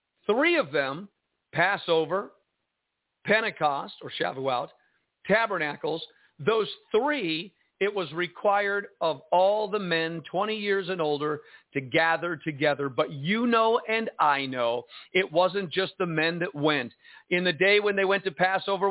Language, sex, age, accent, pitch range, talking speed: English, male, 50-69, American, 180-230 Hz, 145 wpm